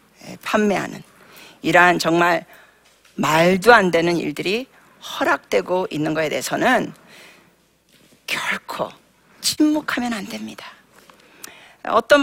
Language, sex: Korean, female